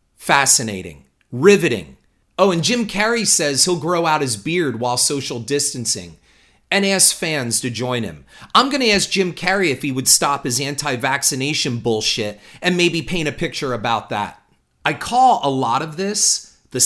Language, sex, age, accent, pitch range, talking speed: English, male, 40-59, American, 115-165 Hz, 165 wpm